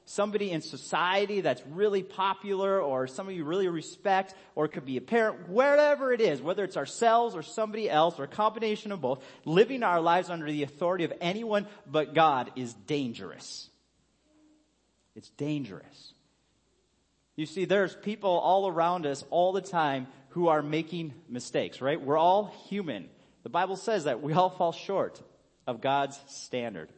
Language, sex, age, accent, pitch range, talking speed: English, male, 30-49, American, 155-200 Hz, 165 wpm